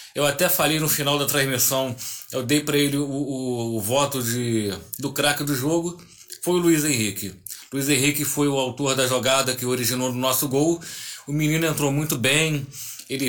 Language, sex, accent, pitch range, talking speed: Portuguese, male, Brazilian, 135-165 Hz, 195 wpm